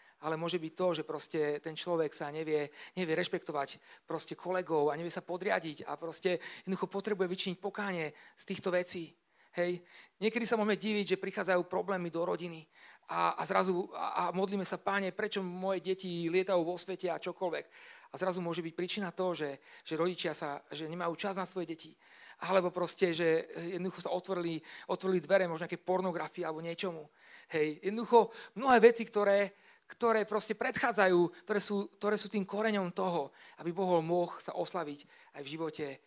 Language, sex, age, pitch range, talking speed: Slovak, male, 40-59, 165-195 Hz, 165 wpm